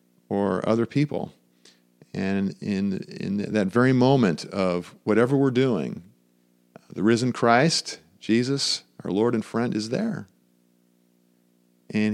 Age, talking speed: 40-59, 120 wpm